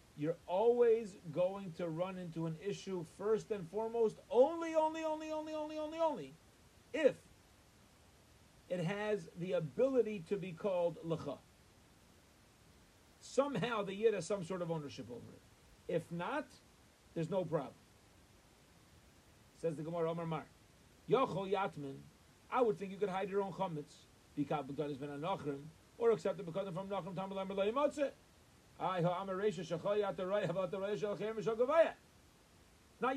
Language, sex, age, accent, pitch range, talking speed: English, male, 40-59, American, 165-215 Hz, 125 wpm